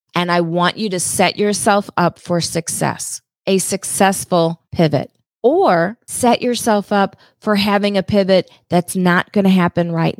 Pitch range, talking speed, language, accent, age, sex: 165-200 Hz, 155 wpm, English, American, 40-59, female